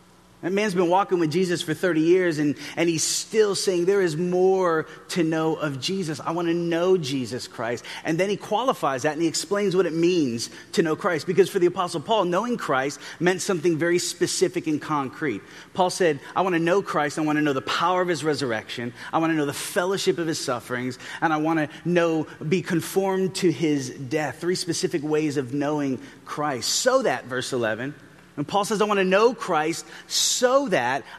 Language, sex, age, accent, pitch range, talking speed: English, male, 30-49, American, 145-185 Hz, 210 wpm